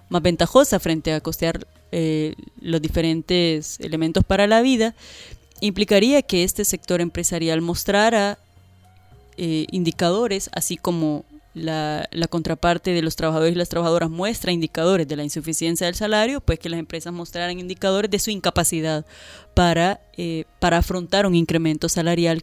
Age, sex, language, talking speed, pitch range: 20-39, female, Spanish, 145 wpm, 165-190 Hz